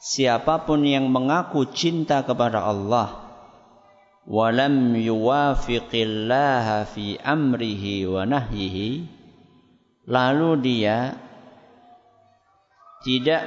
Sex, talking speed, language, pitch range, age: male, 60 wpm, Malay, 115-140 Hz, 50-69